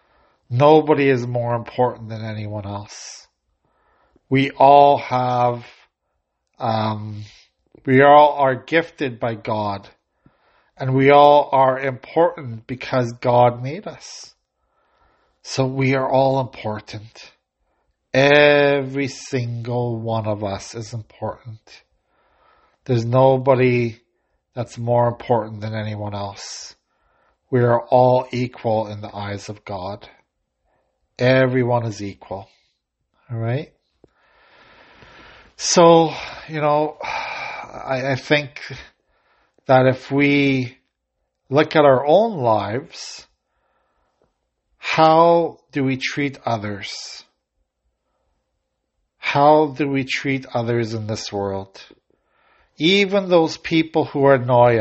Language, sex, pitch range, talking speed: English, male, 115-140 Hz, 100 wpm